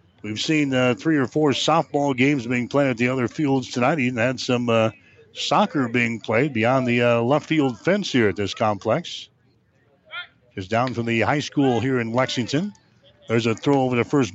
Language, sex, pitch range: English, male, 115-145 Hz